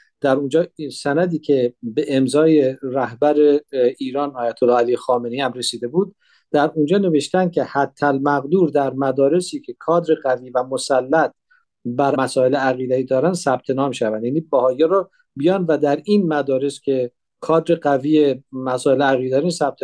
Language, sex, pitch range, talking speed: Persian, male, 135-175 Hz, 145 wpm